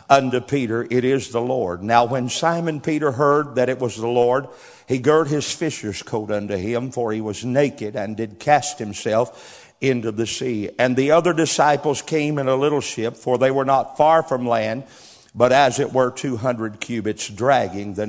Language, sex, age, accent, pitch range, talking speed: English, male, 50-69, American, 120-150 Hz, 195 wpm